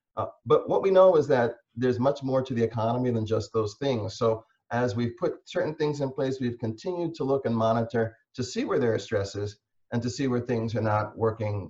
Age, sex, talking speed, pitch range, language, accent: 30-49, male, 225 wpm, 110-130 Hz, English, American